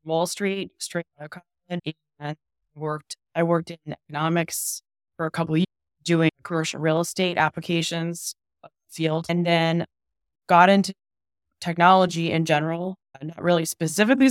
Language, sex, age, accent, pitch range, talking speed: English, female, 20-39, American, 155-180 Hz, 140 wpm